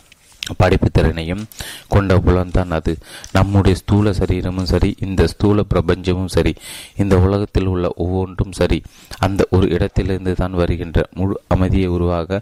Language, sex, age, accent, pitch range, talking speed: Tamil, male, 30-49, native, 85-95 Hz, 115 wpm